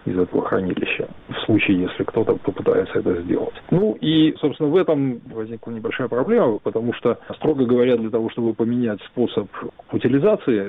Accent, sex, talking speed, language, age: native, male, 155 wpm, Russian, 40-59